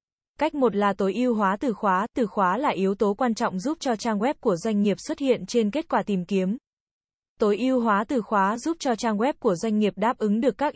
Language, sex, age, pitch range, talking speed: Vietnamese, female, 20-39, 200-245 Hz, 250 wpm